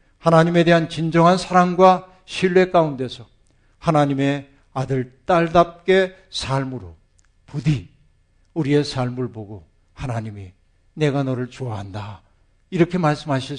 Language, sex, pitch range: Korean, male, 110-140 Hz